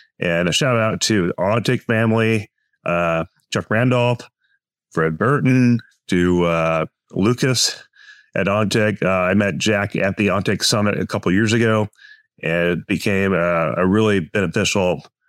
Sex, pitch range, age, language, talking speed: male, 90-120 Hz, 30-49, English, 150 wpm